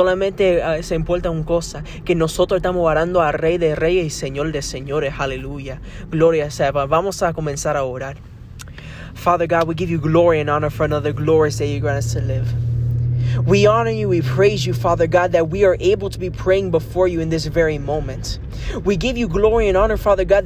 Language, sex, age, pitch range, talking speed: Spanish, male, 20-39, 160-250 Hz, 210 wpm